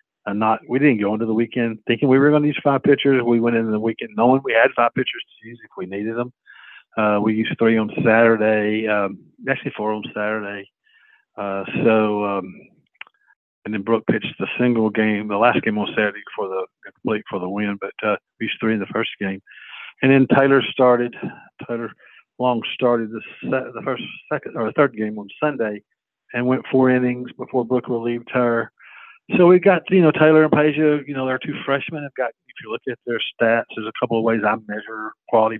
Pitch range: 110-135 Hz